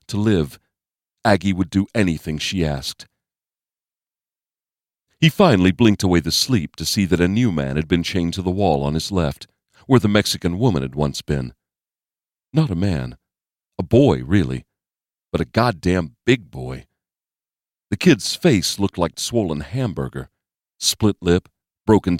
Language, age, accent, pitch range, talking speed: English, 50-69, American, 75-100 Hz, 155 wpm